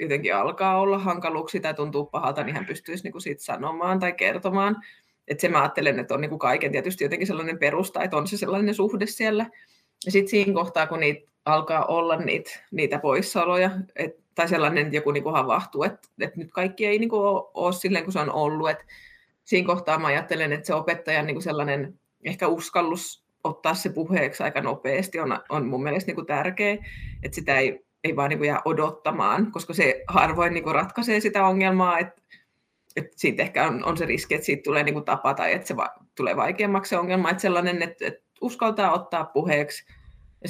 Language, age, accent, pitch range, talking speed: Finnish, 20-39, native, 155-195 Hz, 180 wpm